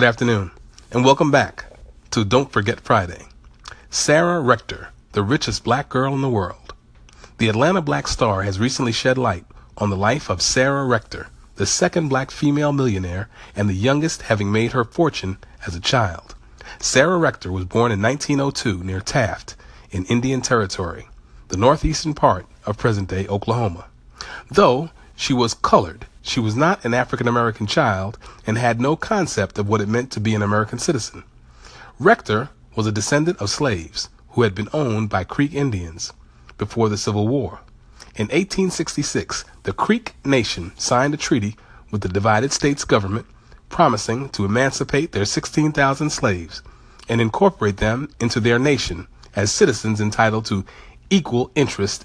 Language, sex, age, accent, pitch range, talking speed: English, male, 40-59, American, 100-135 Hz, 155 wpm